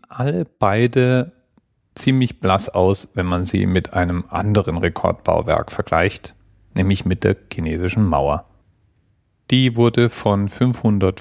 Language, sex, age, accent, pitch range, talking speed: German, male, 40-59, German, 90-115 Hz, 120 wpm